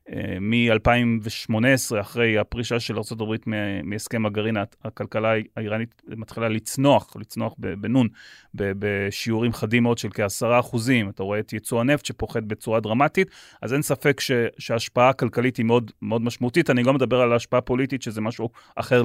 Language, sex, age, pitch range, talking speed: Hebrew, male, 30-49, 110-125 Hz, 140 wpm